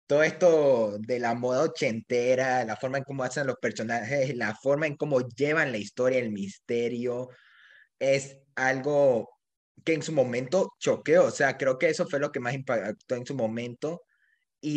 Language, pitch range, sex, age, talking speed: Spanish, 120-165 Hz, male, 20-39, 175 wpm